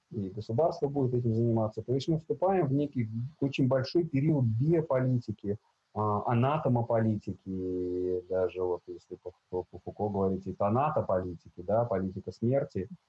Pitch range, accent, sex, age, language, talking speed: 100-135 Hz, native, male, 30-49, Russian, 130 wpm